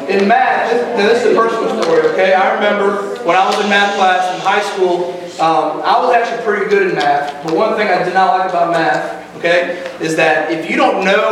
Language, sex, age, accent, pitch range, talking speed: English, male, 30-49, American, 170-215 Hz, 235 wpm